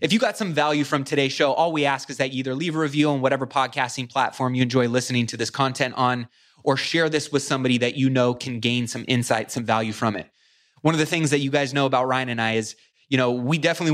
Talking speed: 265 wpm